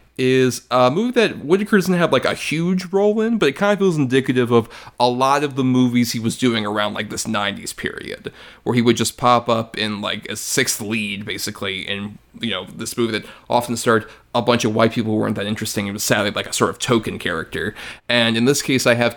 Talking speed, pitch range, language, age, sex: 240 wpm, 110-130 Hz, English, 30-49, male